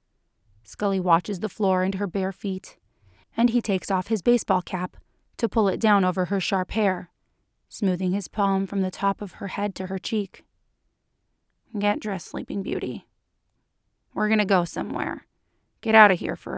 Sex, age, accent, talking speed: female, 30-49, American, 175 wpm